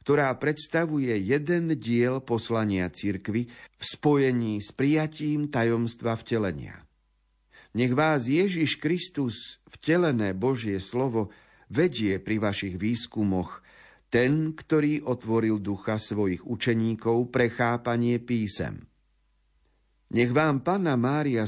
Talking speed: 100 wpm